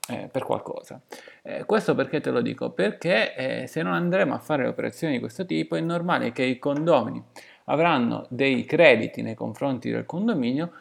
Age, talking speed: 30-49, 180 wpm